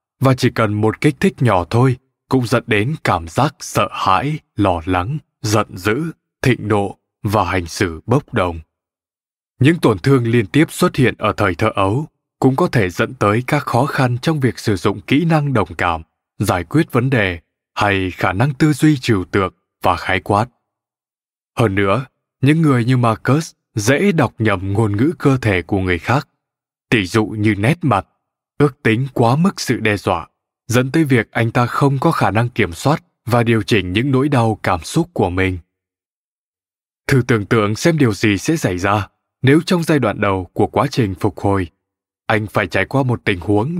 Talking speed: 195 wpm